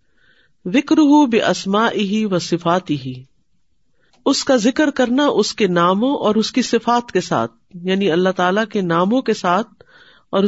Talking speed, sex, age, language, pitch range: 165 wpm, female, 50-69, Urdu, 175-220 Hz